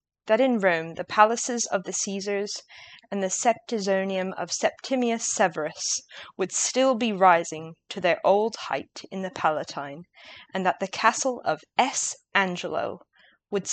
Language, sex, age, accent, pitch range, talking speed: English, female, 20-39, British, 170-225 Hz, 145 wpm